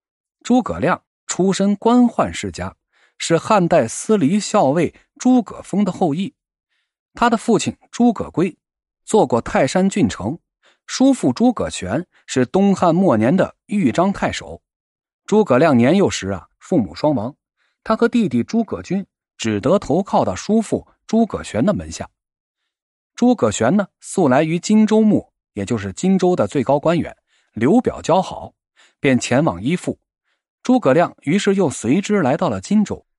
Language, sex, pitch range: Chinese, male, 180-235 Hz